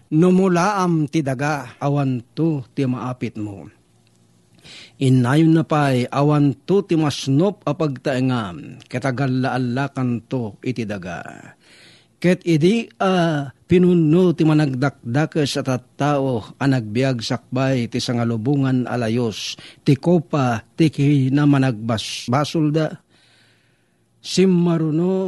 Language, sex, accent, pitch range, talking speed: Filipino, male, native, 125-155 Hz, 95 wpm